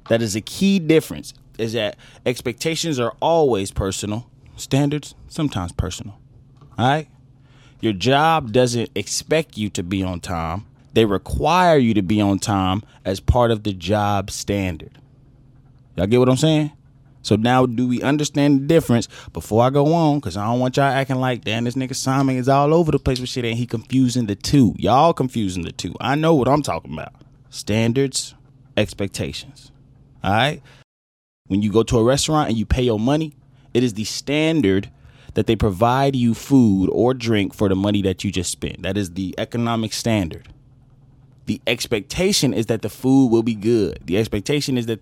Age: 20-39